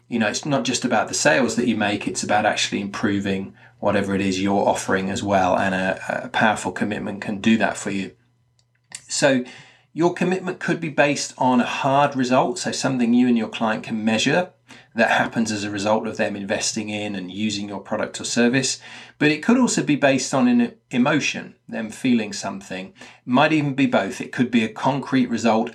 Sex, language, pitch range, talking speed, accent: male, English, 110-135 Hz, 205 wpm, British